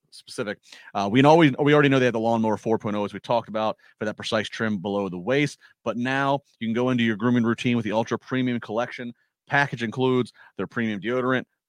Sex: male